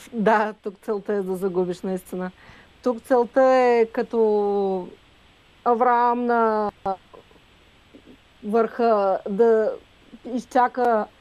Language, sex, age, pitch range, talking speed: Bulgarian, female, 40-59, 220-265 Hz, 85 wpm